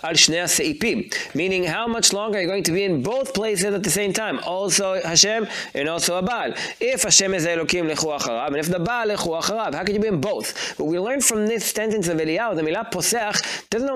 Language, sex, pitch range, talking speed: English, male, 170-220 Hz, 220 wpm